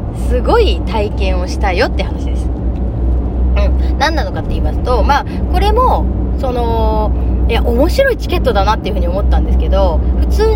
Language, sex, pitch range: Japanese, female, 65-90 Hz